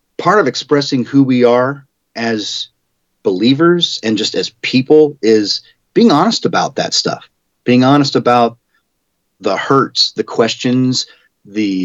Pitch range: 105-125 Hz